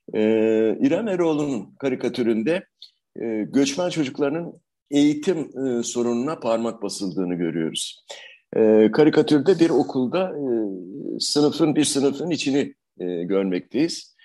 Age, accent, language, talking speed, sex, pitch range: 60-79, native, Turkish, 100 wpm, male, 105-160 Hz